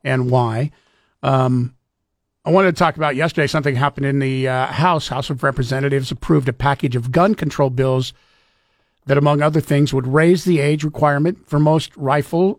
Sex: male